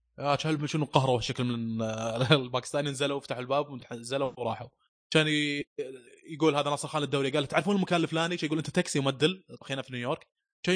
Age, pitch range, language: 20-39, 120-155 Hz, Arabic